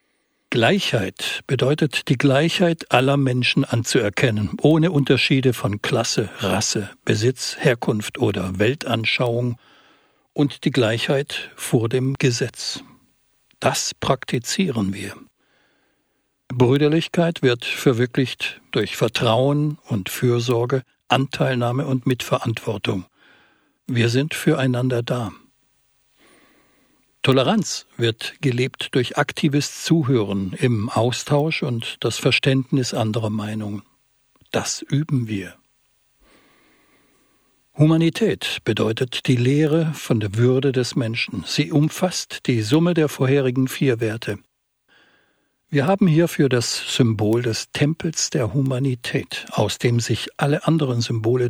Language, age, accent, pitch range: German, 60-79, German, 115-145 Hz